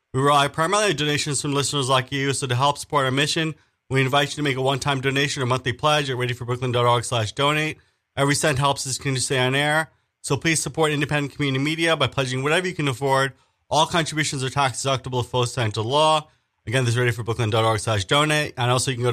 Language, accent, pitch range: English, American, 125-160 Hz